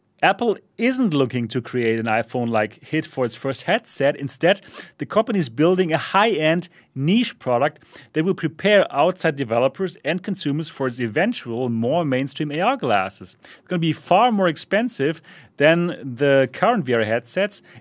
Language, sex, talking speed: English, male, 160 wpm